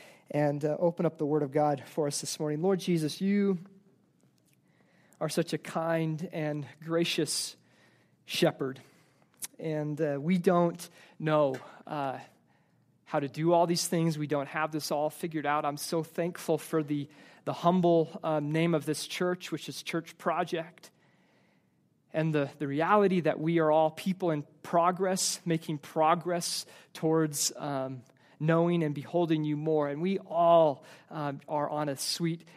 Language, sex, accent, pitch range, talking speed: English, male, American, 150-170 Hz, 155 wpm